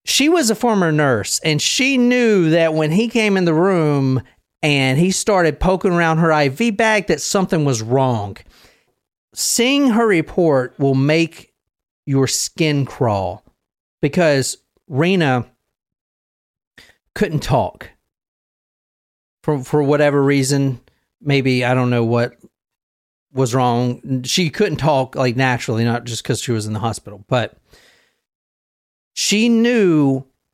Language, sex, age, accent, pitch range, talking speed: English, male, 40-59, American, 120-170 Hz, 130 wpm